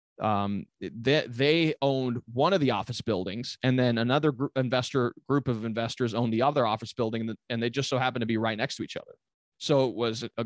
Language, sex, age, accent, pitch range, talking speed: English, male, 30-49, American, 110-140 Hz, 220 wpm